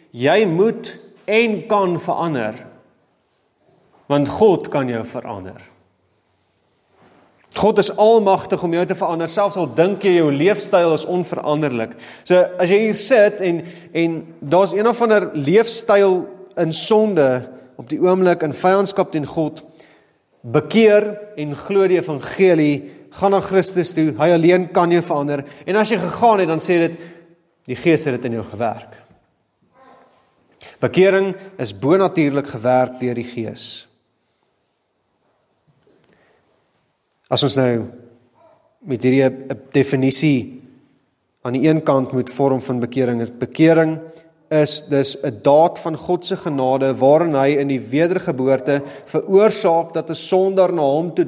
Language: English